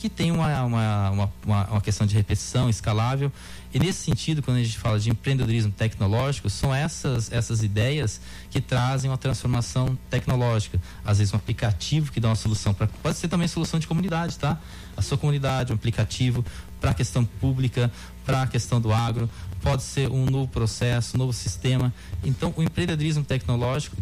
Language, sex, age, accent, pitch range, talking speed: Portuguese, male, 20-39, Brazilian, 105-130 Hz, 175 wpm